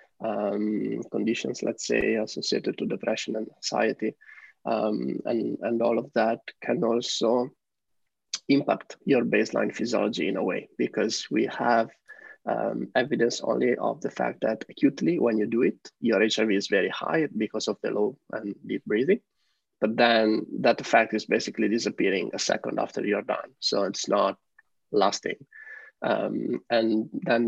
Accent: Italian